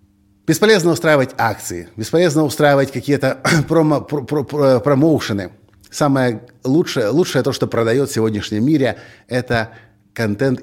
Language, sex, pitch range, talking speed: Russian, male, 105-150 Hz, 115 wpm